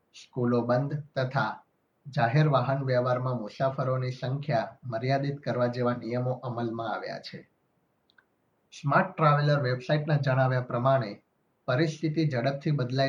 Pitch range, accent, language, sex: 125-145 Hz, native, Gujarati, male